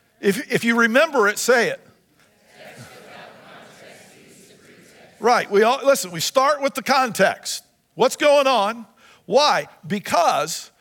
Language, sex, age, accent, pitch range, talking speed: English, male, 50-69, American, 205-265 Hz, 115 wpm